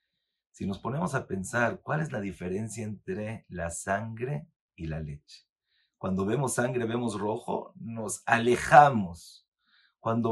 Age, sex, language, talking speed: 50-69, male, Spanish, 135 wpm